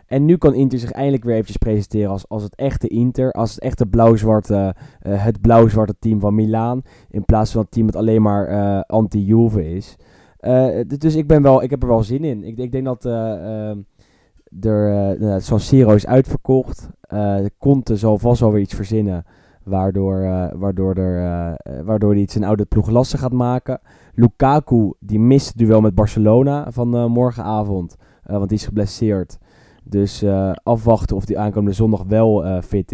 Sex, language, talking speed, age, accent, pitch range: male, English, 190 wpm, 10-29, Dutch, 100-120 Hz